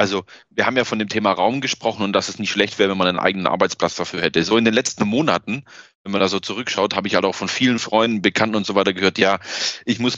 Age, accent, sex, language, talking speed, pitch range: 30-49, German, male, German, 275 wpm, 95-110 Hz